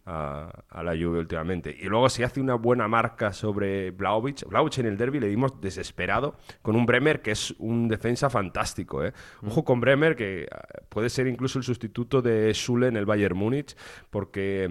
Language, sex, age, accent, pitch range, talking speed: Spanish, male, 30-49, Spanish, 110-135 Hz, 190 wpm